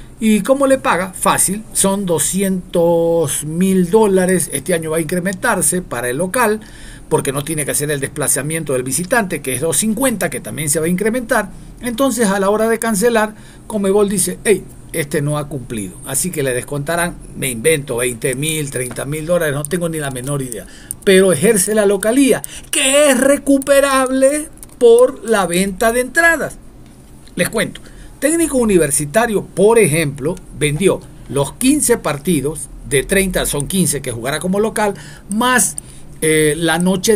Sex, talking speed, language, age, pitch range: male, 160 wpm, Spanish, 50-69, 150-220 Hz